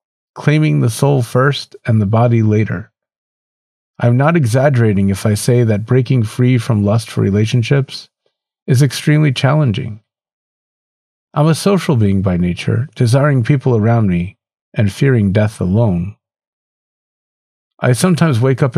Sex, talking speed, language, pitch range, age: male, 135 wpm, English, 105-135 Hz, 50-69